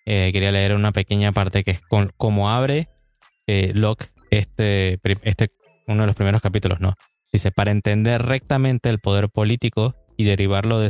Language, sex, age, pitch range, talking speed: Spanish, male, 20-39, 100-120 Hz, 170 wpm